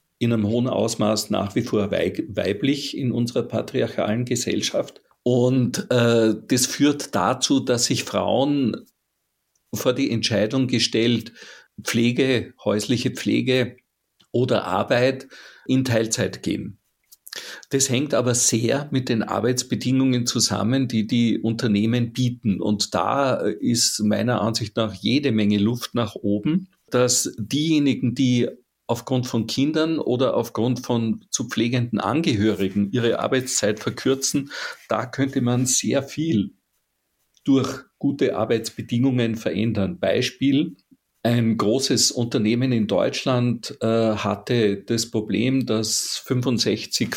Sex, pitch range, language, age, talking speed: male, 110-130 Hz, German, 50-69, 115 wpm